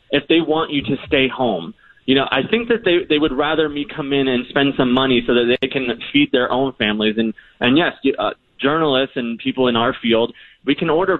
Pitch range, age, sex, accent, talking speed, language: 120-165 Hz, 20-39, male, American, 235 wpm, English